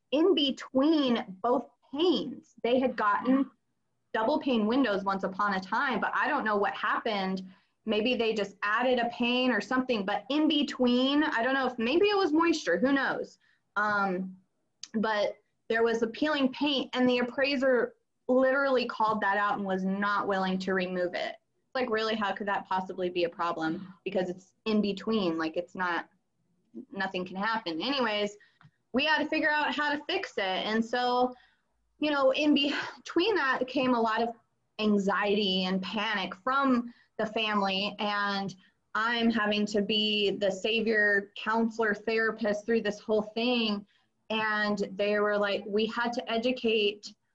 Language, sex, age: English, female, 20-39